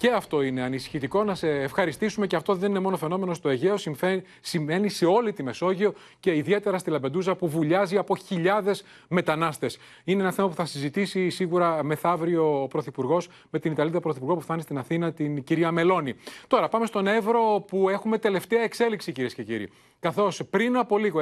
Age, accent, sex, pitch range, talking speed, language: 30-49, native, male, 155-210 Hz, 185 wpm, Greek